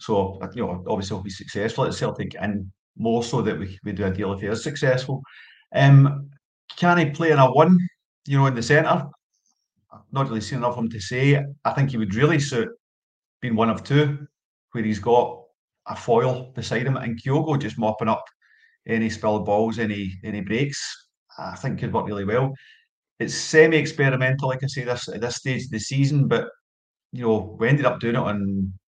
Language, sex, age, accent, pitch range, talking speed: English, male, 40-59, British, 110-135 Hz, 205 wpm